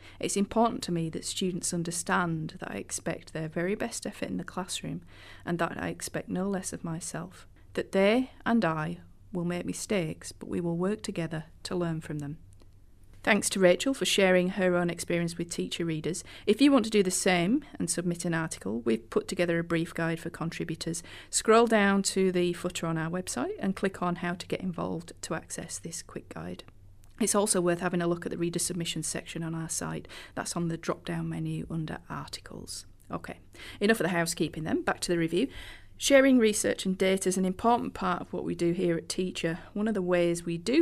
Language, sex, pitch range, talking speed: English, female, 165-195 Hz, 210 wpm